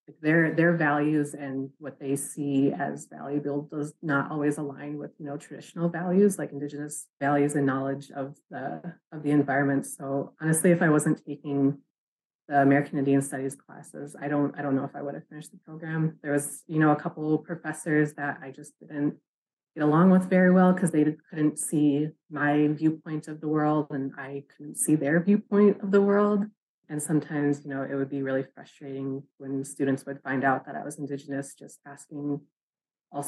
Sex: female